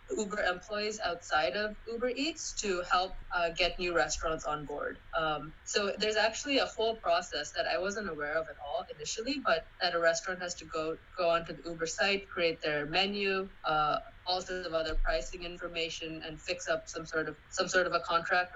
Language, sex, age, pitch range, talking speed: English, female, 20-39, 155-185 Hz, 200 wpm